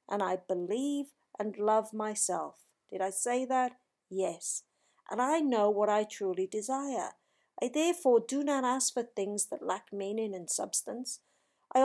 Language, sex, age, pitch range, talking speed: English, female, 50-69, 195-265 Hz, 155 wpm